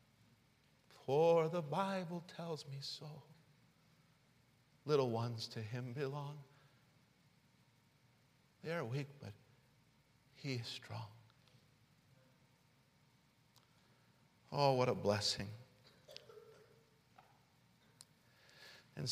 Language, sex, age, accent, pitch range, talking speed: English, male, 50-69, American, 125-150 Hz, 70 wpm